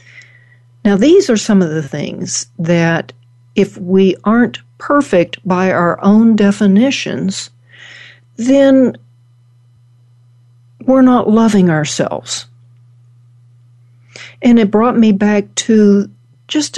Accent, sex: American, female